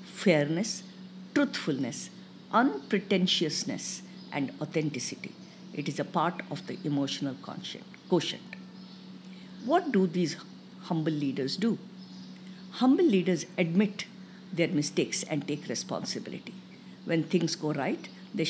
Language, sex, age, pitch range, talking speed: English, female, 50-69, 160-195 Hz, 105 wpm